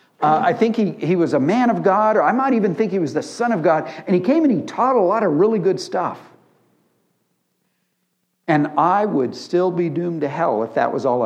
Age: 60-79